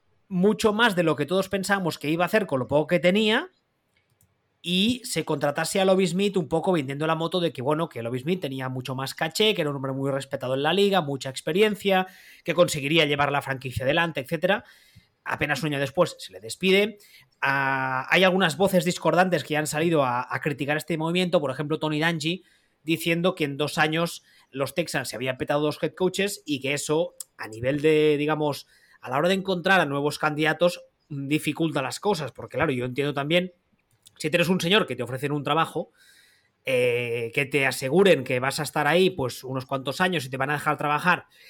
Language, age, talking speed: Spanish, 20-39, 205 wpm